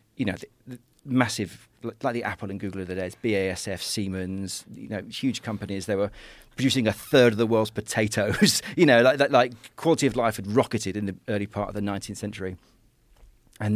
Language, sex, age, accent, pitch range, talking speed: English, male, 40-59, British, 100-120 Hz, 210 wpm